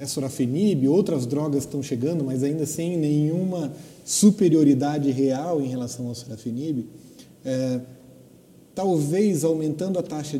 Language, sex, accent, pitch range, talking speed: Portuguese, male, Brazilian, 130-165 Hz, 120 wpm